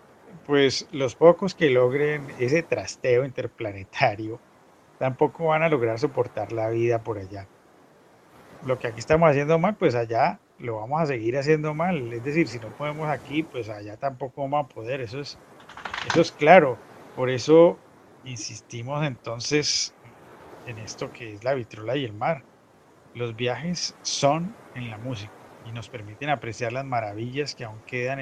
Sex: male